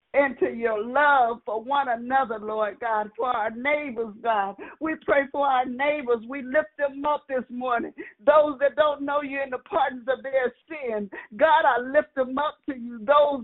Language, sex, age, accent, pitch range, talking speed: English, female, 50-69, American, 240-295 Hz, 190 wpm